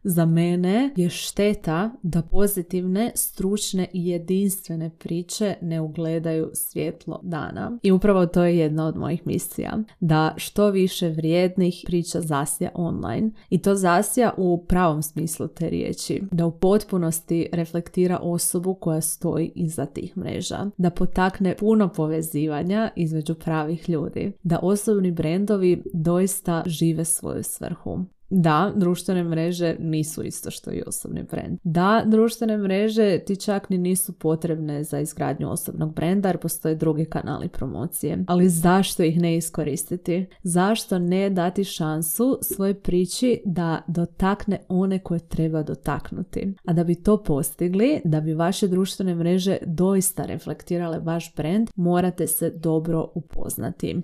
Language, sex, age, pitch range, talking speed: Croatian, female, 30-49, 165-190 Hz, 135 wpm